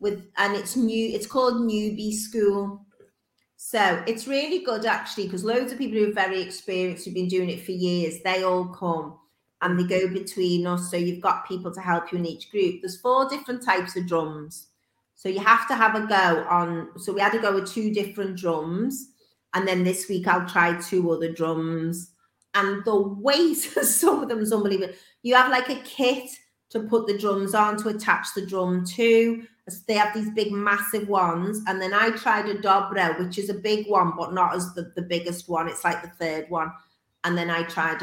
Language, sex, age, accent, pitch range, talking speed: English, female, 30-49, British, 170-210 Hz, 210 wpm